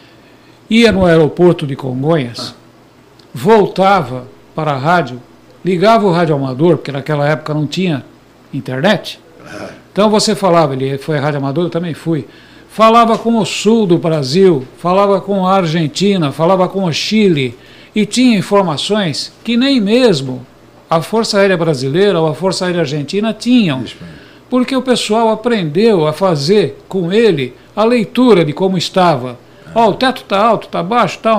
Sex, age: male, 60-79